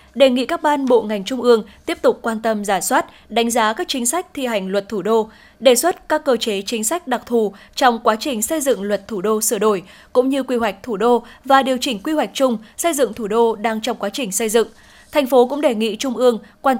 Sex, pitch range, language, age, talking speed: female, 220-270 Hz, Vietnamese, 10-29, 260 wpm